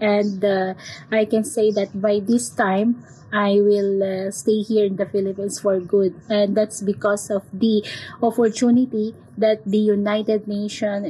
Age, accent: 20-39, Filipino